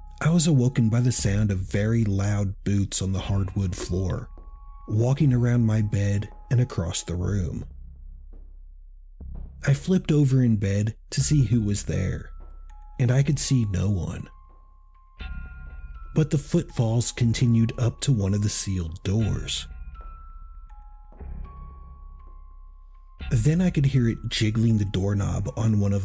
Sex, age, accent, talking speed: male, 40-59, American, 140 wpm